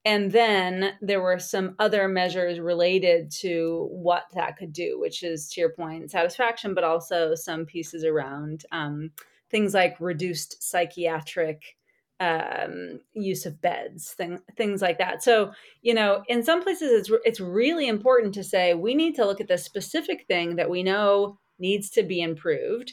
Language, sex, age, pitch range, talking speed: English, female, 30-49, 170-220 Hz, 170 wpm